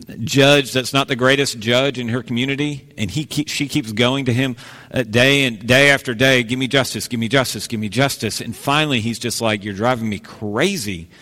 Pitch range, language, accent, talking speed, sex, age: 110-145 Hz, English, American, 215 wpm, male, 40-59